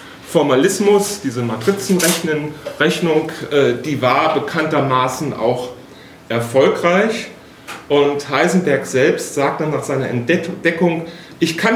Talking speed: 90 wpm